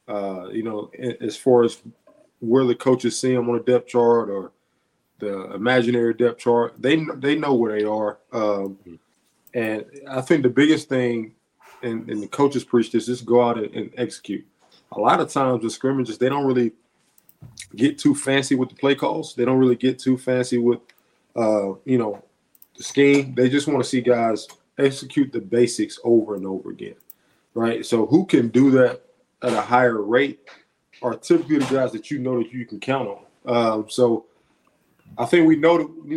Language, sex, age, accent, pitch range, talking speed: English, male, 20-39, American, 115-130 Hz, 190 wpm